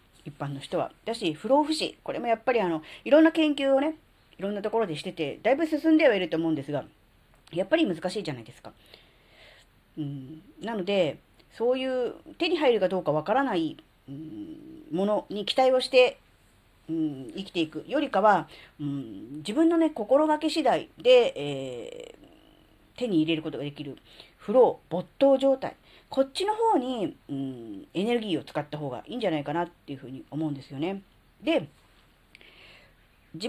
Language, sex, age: Japanese, female, 40-59